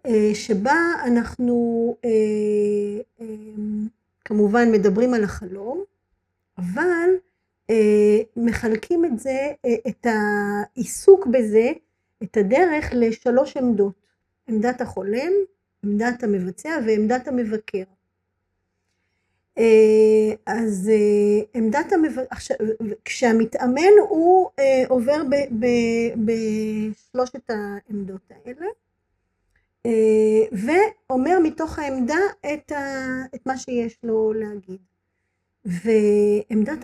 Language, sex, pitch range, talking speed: Hebrew, female, 210-270 Hz, 70 wpm